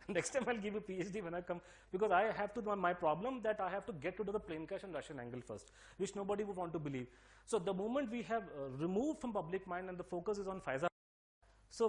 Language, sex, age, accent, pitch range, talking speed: English, male, 30-49, Indian, 135-195 Hz, 275 wpm